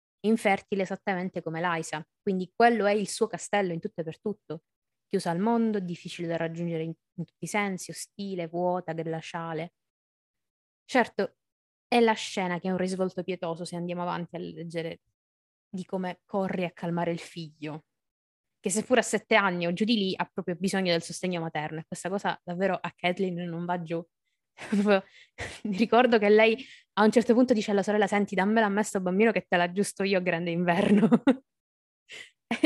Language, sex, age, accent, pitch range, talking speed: Italian, female, 20-39, native, 170-205 Hz, 180 wpm